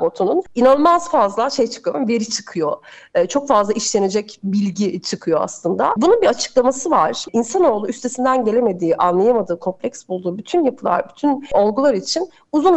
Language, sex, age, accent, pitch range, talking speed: Turkish, female, 40-59, native, 200-275 Hz, 140 wpm